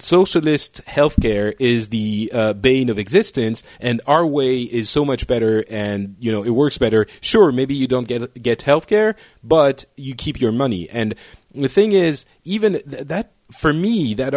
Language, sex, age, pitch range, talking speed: English, male, 30-49, 115-155 Hz, 180 wpm